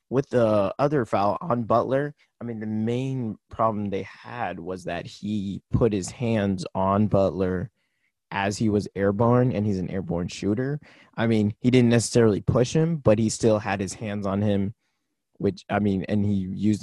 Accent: American